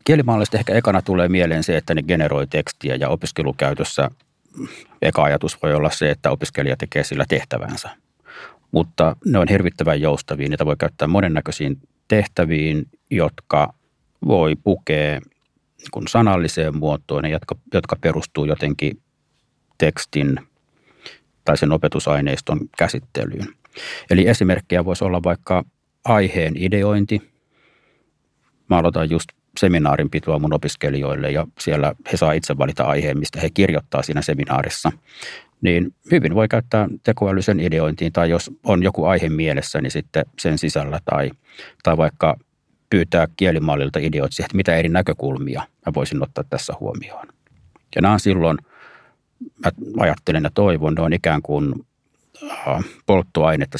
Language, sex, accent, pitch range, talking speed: Finnish, male, native, 75-100 Hz, 130 wpm